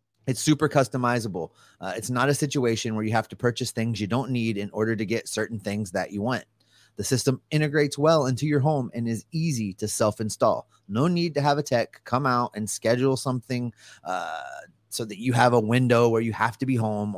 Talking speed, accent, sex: 215 wpm, American, male